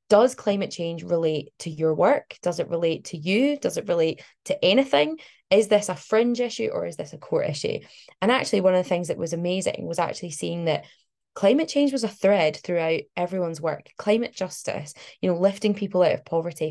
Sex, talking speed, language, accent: female, 210 wpm, English, British